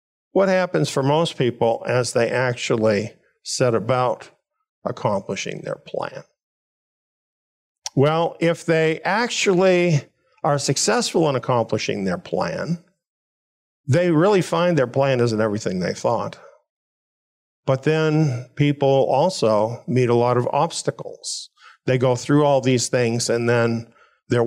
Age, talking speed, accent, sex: 50-69, 125 wpm, American, male